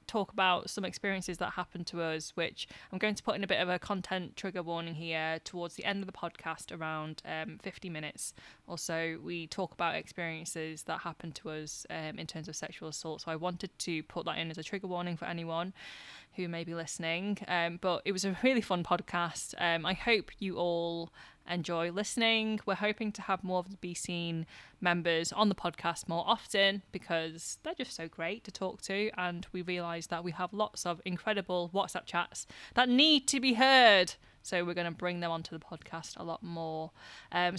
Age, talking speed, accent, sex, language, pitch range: 20-39, 210 wpm, British, female, English, 165-200 Hz